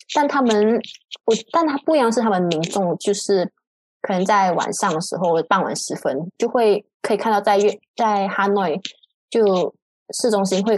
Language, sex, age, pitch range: Chinese, female, 20-39, 185-215 Hz